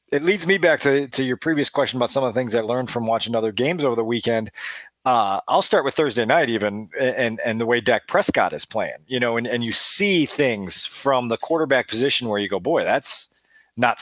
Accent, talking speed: American, 235 wpm